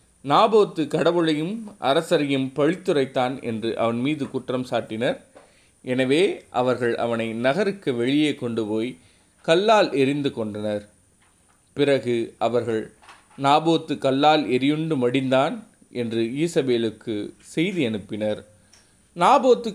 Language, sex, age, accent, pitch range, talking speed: Tamil, male, 30-49, native, 115-150 Hz, 90 wpm